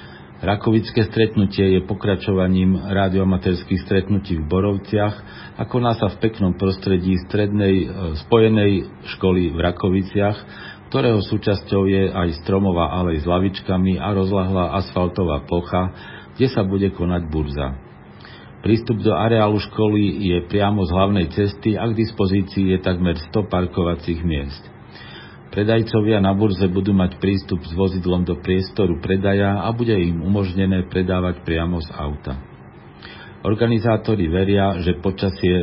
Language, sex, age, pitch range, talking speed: Slovak, male, 50-69, 85-100 Hz, 130 wpm